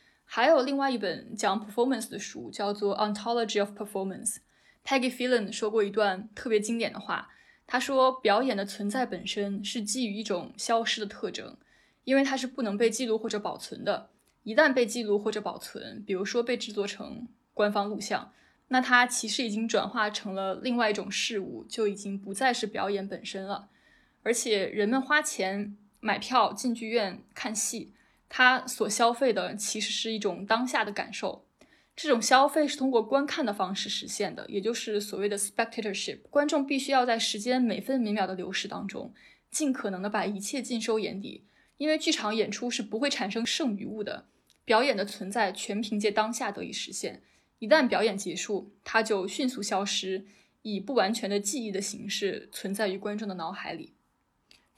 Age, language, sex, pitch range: 20-39, Chinese, female, 205-250 Hz